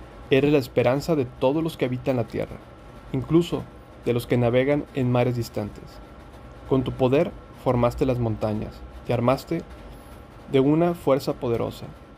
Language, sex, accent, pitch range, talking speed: Spanish, male, Mexican, 115-140 Hz, 150 wpm